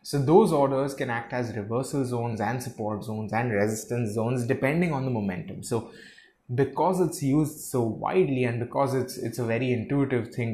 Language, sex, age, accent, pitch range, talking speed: English, male, 20-39, Indian, 110-140 Hz, 180 wpm